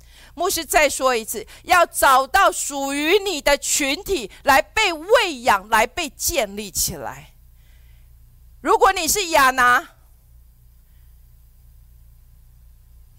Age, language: 40-59, Chinese